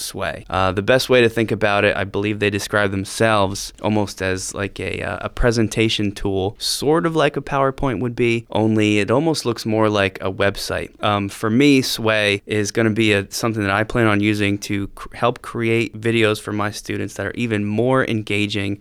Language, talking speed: English, 200 wpm